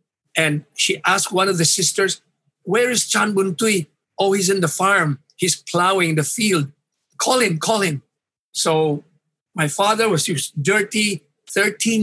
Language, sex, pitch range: English, male, 150-195 Hz